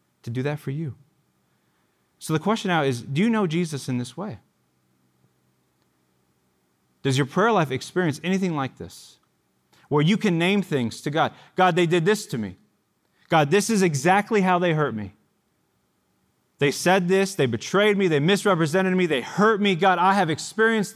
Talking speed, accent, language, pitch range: 180 wpm, American, English, 110-170 Hz